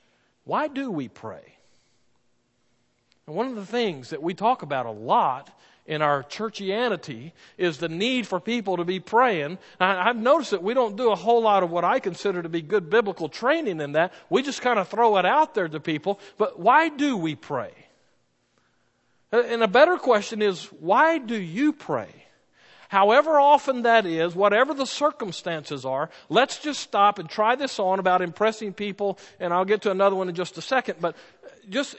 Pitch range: 180-245 Hz